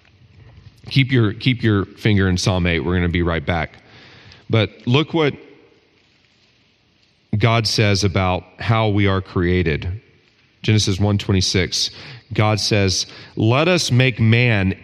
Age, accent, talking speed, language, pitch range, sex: 40-59, American, 125 wpm, English, 100-125 Hz, male